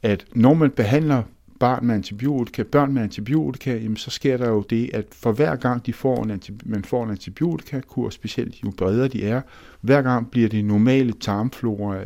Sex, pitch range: male, 95-125 Hz